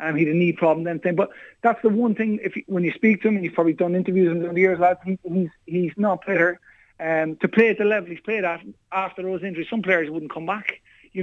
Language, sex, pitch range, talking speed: English, male, 175-205 Hz, 280 wpm